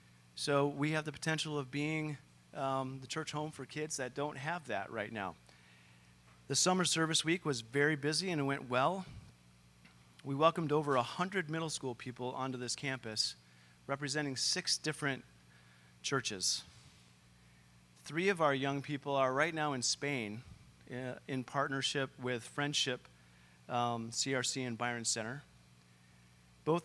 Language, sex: English, male